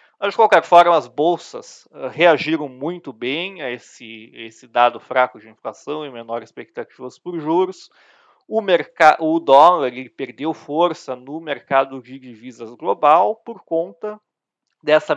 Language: Portuguese